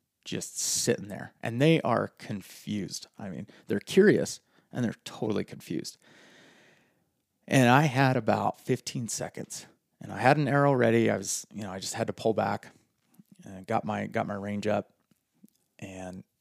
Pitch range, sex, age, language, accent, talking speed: 105-125 Hz, male, 30-49, English, American, 165 wpm